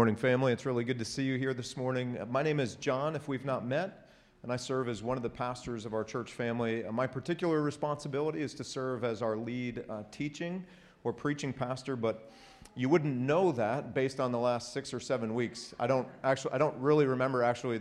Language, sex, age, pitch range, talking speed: English, male, 40-59, 115-135 Hz, 220 wpm